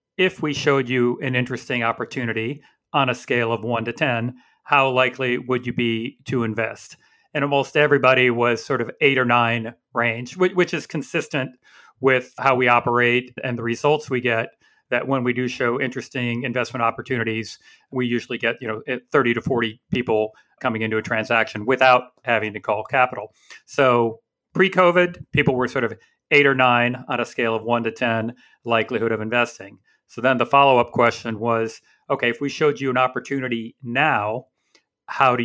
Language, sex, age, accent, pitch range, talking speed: English, male, 40-59, American, 115-130 Hz, 180 wpm